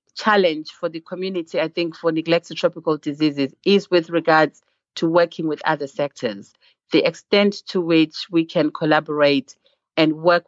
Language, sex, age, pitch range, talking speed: English, female, 40-59, 150-180 Hz, 155 wpm